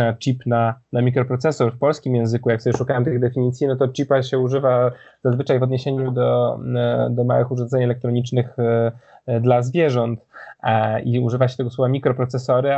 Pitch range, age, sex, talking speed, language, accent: 120-135 Hz, 20-39, male, 155 wpm, Polish, native